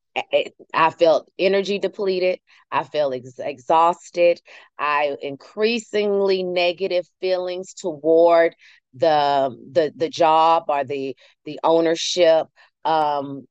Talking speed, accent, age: 100 wpm, American, 30-49